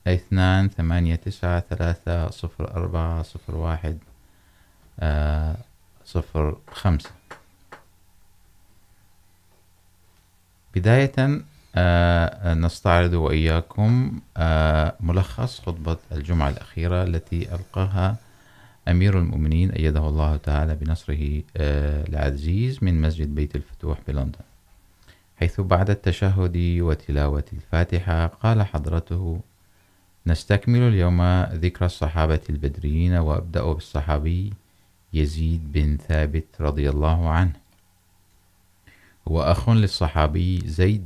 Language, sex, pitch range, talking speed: Urdu, male, 75-90 Hz, 65 wpm